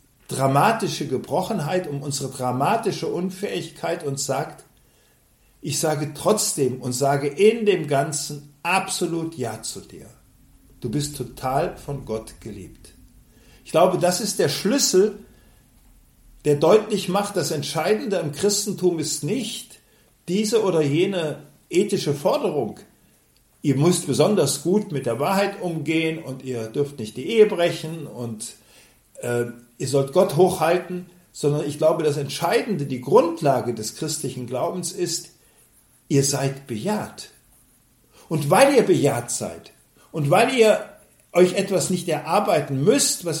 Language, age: German, 50-69